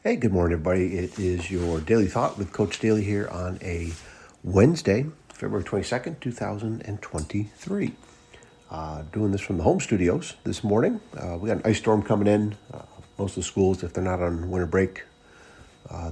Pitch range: 90-110 Hz